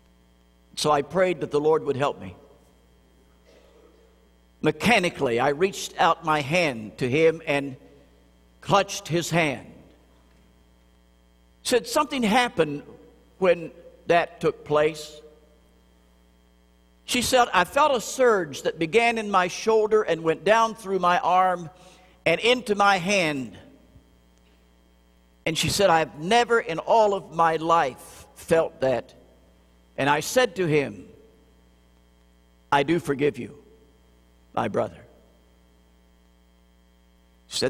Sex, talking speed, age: male, 115 wpm, 50-69